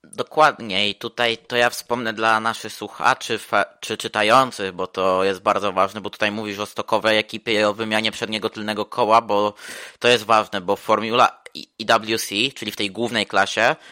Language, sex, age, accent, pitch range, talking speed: Polish, male, 20-39, native, 100-115 Hz, 175 wpm